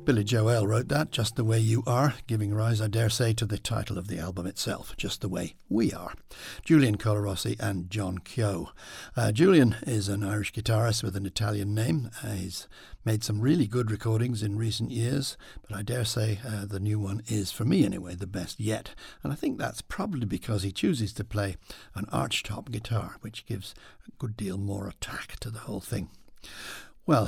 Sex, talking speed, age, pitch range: male, 200 wpm, 60-79, 105-120 Hz